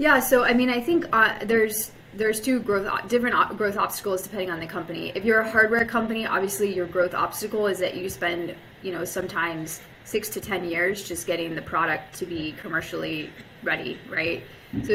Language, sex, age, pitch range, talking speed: English, female, 20-39, 175-210 Hz, 195 wpm